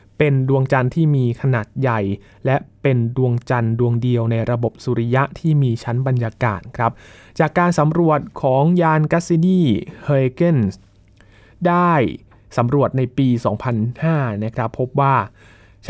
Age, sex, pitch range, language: 20-39, male, 115-145 Hz, Thai